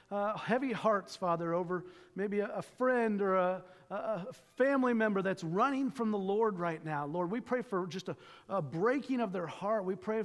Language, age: English, 40-59